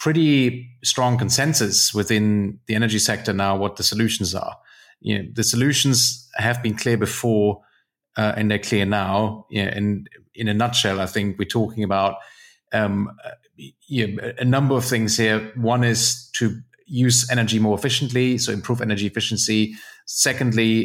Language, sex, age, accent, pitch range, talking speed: English, male, 30-49, German, 105-125 Hz, 160 wpm